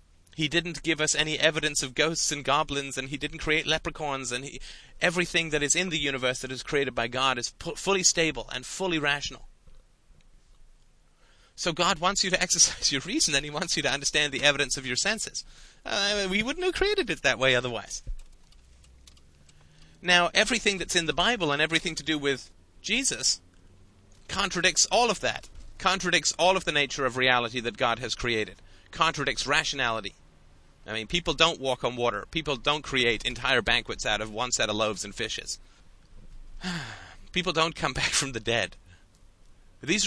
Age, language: 30-49, English